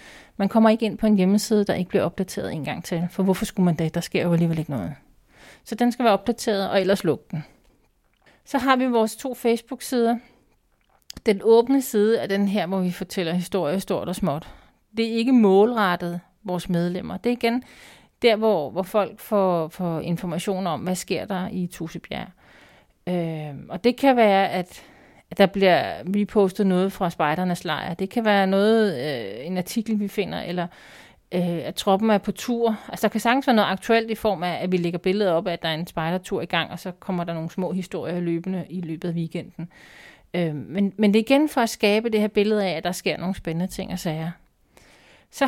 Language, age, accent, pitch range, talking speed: Danish, 40-59, native, 175-220 Hz, 210 wpm